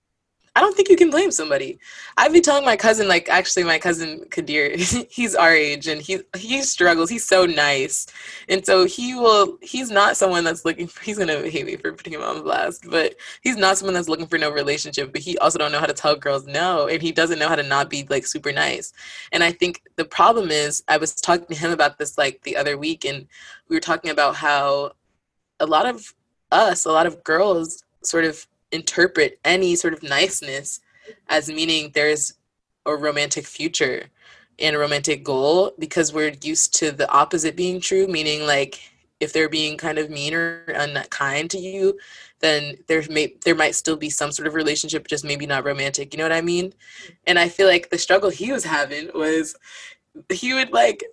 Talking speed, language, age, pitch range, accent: 210 wpm, English, 20-39, 150-195 Hz, American